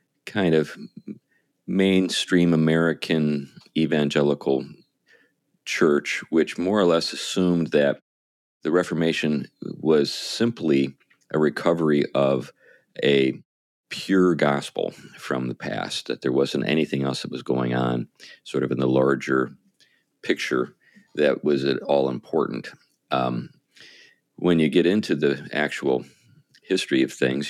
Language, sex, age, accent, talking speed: English, male, 40-59, American, 120 wpm